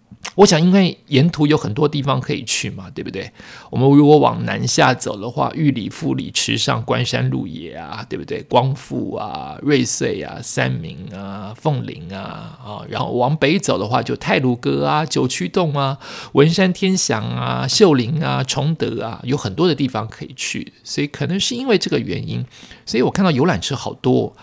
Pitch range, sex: 125-165 Hz, male